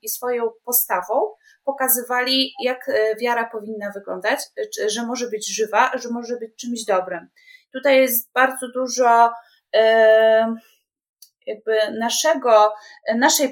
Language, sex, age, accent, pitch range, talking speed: Polish, female, 20-39, native, 220-255 Hz, 100 wpm